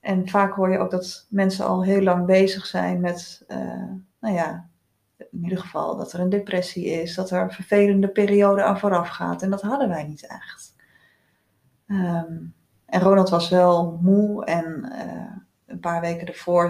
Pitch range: 170-200 Hz